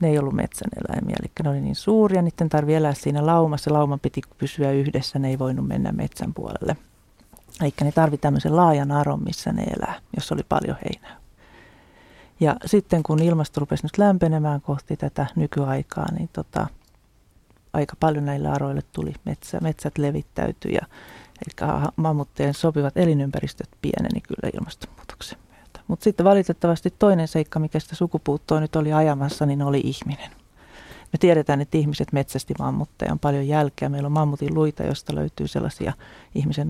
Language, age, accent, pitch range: Finnish, 40-59, native, 140-160 Hz